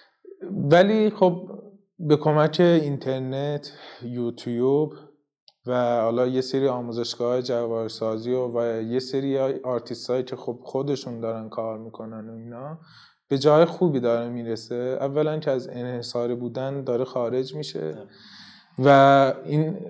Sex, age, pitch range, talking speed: male, 20-39, 120-155 Hz, 120 wpm